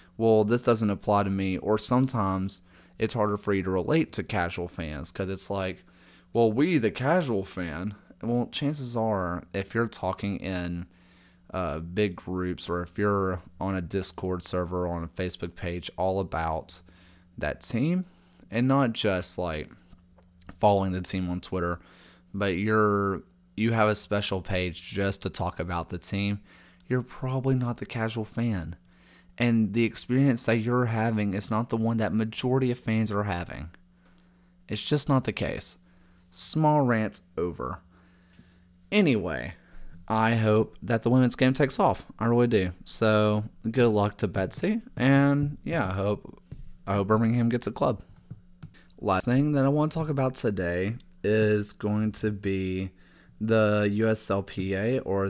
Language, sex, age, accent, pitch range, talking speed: English, male, 30-49, American, 90-115 Hz, 155 wpm